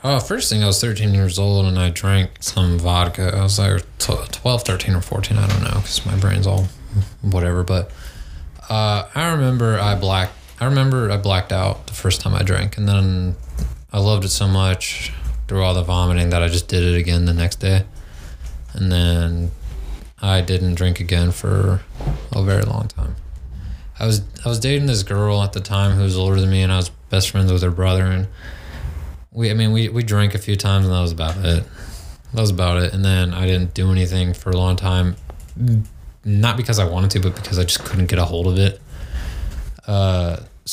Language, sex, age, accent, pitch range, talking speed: English, male, 20-39, American, 90-100 Hz, 210 wpm